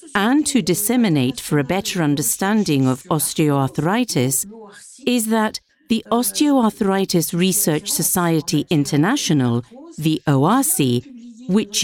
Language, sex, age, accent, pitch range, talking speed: English, female, 50-69, British, 155-240 Hz, 95 wpm